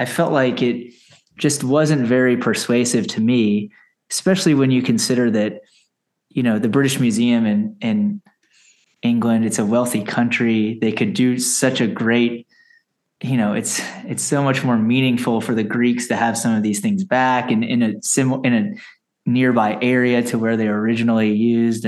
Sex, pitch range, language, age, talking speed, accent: male, 115-140 Hz, English, 20-39, 175 wpm, American